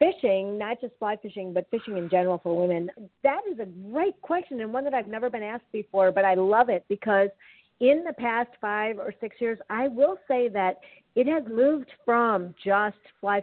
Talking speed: 205 wpm